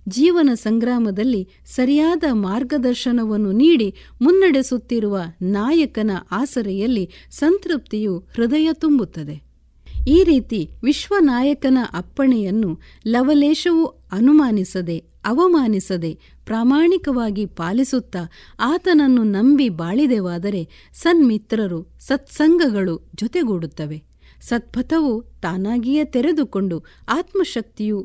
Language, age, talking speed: Kannada, 50-69, 65 wpm